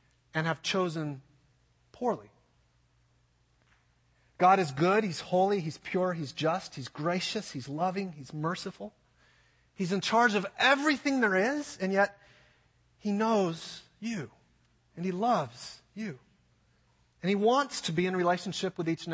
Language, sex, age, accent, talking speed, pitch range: English, male, 30-49, American, 140 wpm, 150-210 Hz